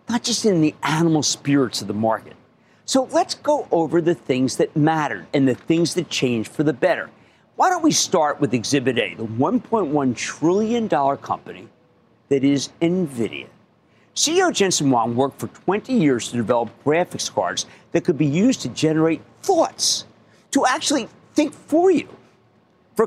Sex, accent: male, American